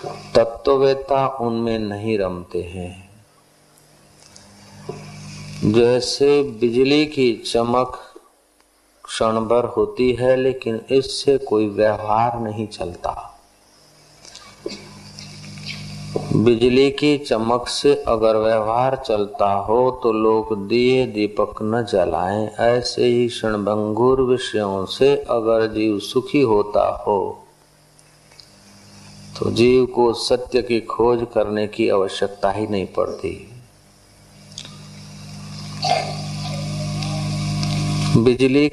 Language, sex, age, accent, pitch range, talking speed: Hindi, male, 50-69, native, 110-140 Hz, 85 wpm